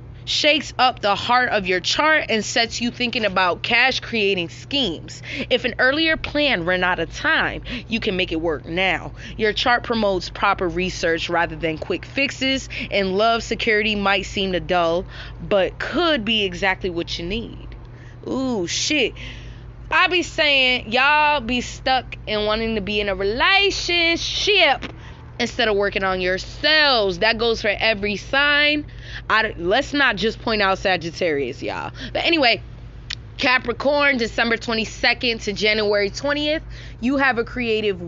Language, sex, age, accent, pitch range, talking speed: English, female, 20-39, American, 185-245 Hz, 150 wpm